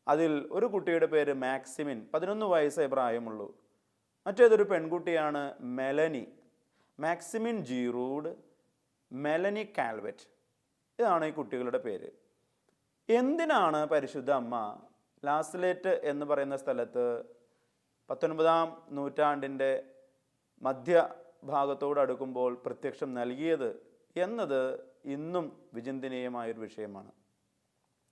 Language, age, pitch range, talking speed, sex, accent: English, 30-49, 135-220 Hz, 60 wpm, male, Indian